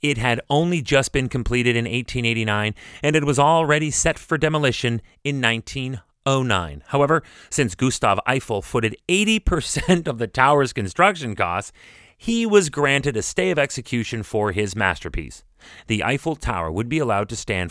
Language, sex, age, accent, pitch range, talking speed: English, male, 30-49, American, 105-150 Hz, 155 wpm